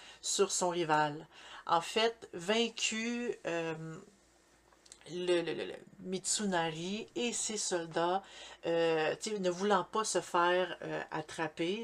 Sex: female